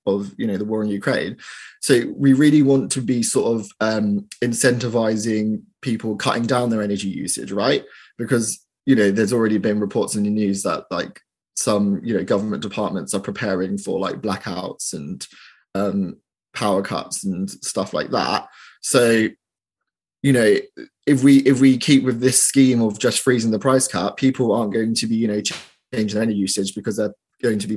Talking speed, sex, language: 185 wpm, male, English